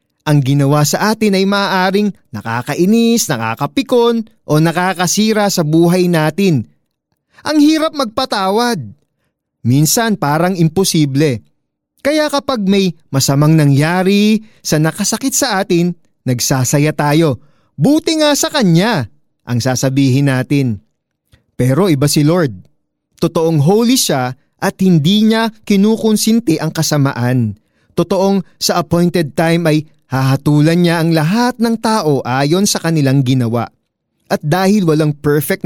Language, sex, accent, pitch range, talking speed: Filipino, male, native, 145-200 Hz, 115 wpm